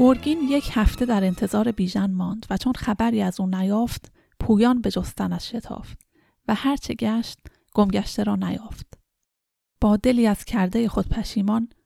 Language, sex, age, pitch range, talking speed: Persian, female, 30-49, 200-235 Hz, 150 wpm